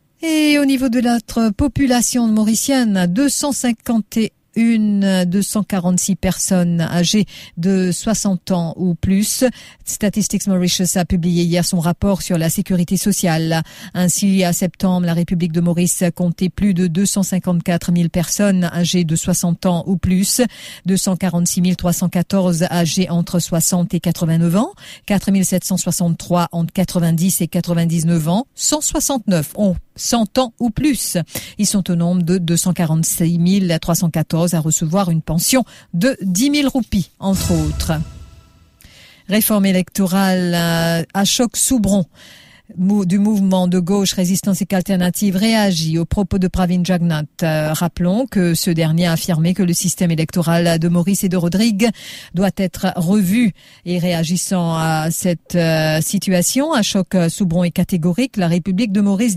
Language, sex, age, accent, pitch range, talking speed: English, female, 50-69, French, 175-205 Hz, 140 wpm